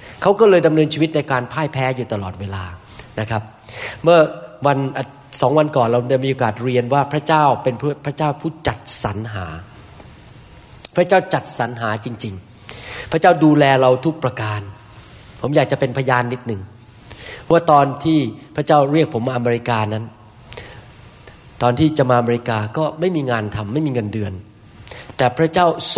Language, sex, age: Thai, male, 30-49